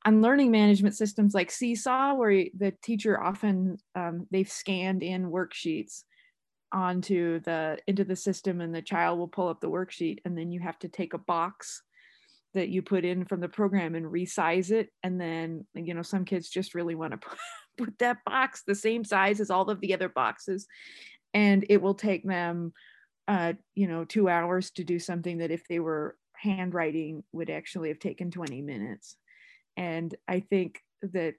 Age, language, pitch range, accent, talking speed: 30-49, English, 170-195 Hz, American, 185 wpm